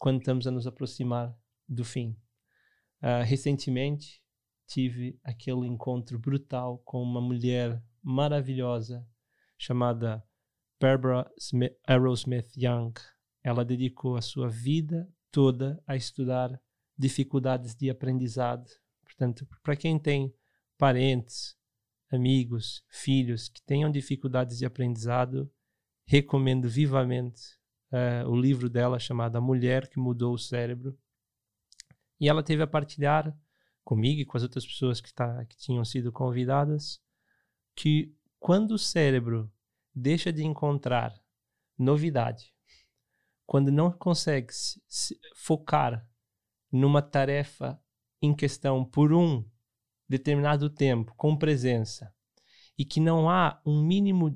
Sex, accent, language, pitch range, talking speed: male, Brazilian, Portuguese, 120-145 Hz, 115 wpm